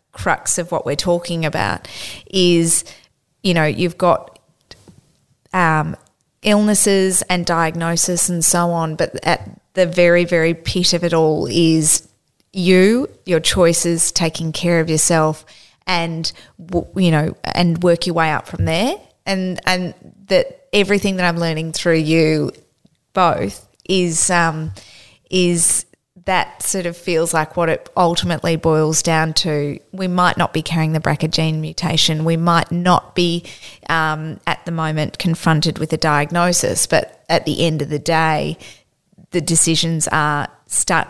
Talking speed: 145 wpm